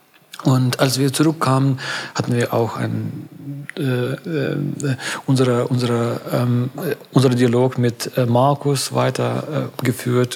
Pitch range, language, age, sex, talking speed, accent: 120-135 Hz, German, 40-59, male, 105 wpm, German